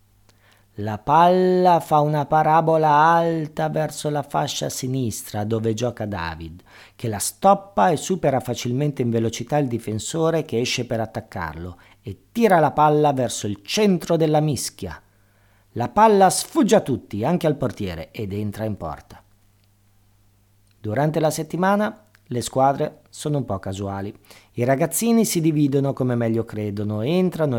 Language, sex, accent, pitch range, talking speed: Italian, male, native, 100-155 Hz, 140 wpm